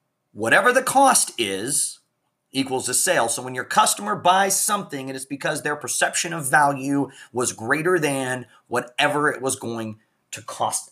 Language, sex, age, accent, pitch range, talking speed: English, male, 30-49, American, 115-175 Hz, 160 wpm